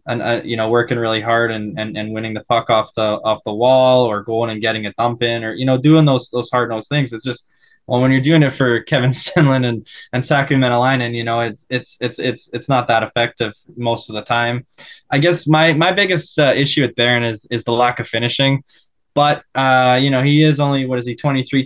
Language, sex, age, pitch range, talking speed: English, male, 10-29, 115-135 Hz, 245 wpm